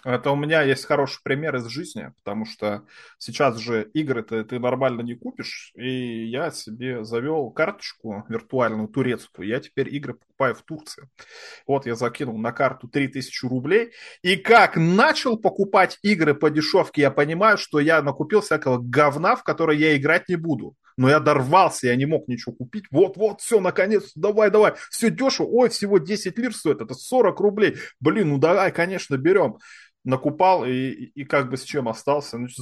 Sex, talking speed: male, 170 wpm